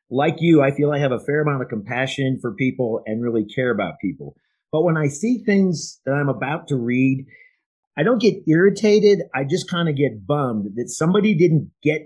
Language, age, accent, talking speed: English, 40-59, American, 210 wpm